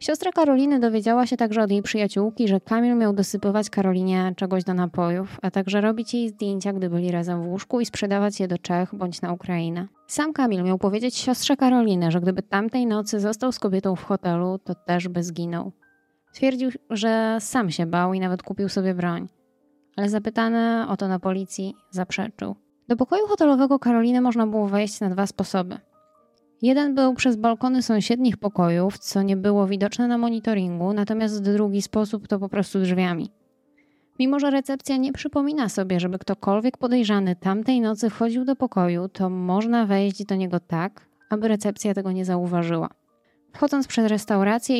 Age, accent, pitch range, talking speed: 20-39, native, 190-245 Hz, 170 wpm